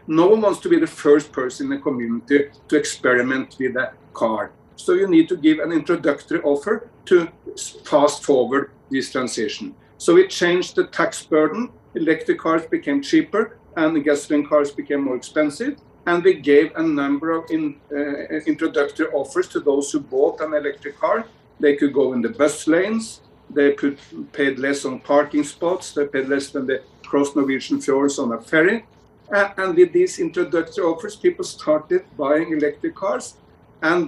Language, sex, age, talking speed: English, male, 50-69, 175 wpm